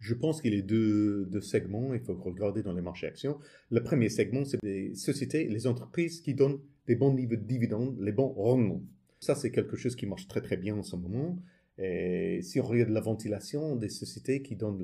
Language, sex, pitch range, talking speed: French, male, 105-130 Hz, 225 wpm